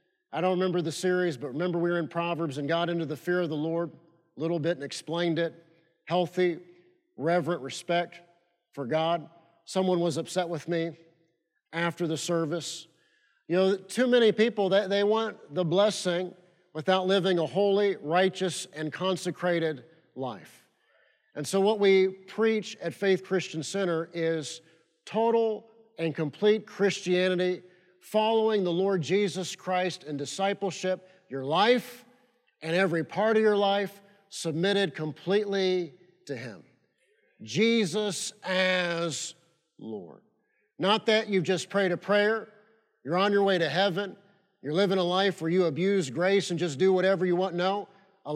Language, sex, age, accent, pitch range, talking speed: English, male, 50-69, American, 165-200 Hz, 150 wpm